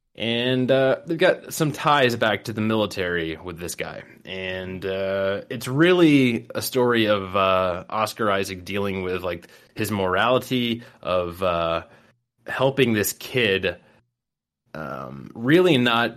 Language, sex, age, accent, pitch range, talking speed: English, male, 20-39, American, 95-125 Hz, 135 wpm